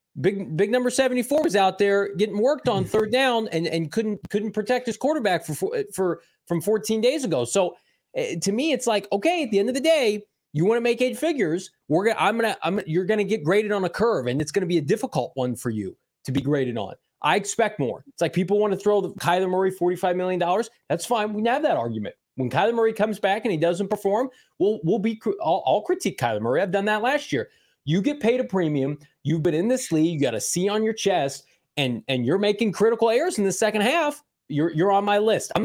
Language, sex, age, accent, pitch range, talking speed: English, male, 20-39, American, 155-215 Hz, 250 wpm